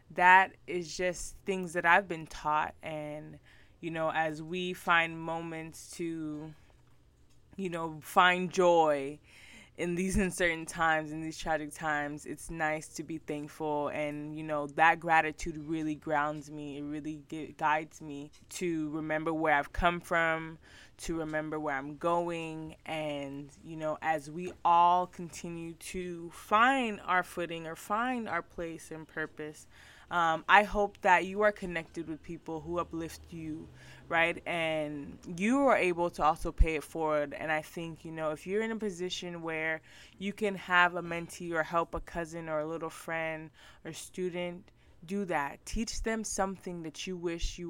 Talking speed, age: 165 wpm, 20-39